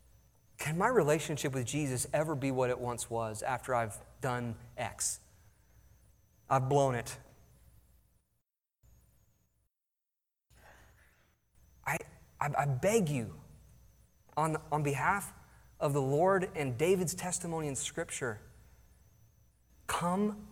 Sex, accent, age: male, American, 30-49